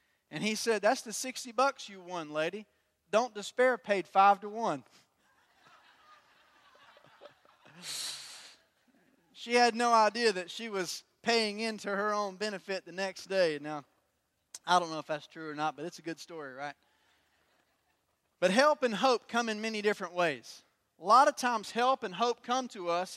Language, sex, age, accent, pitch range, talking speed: English, male, 30-49, American, 180-235 Hz, 170 wpm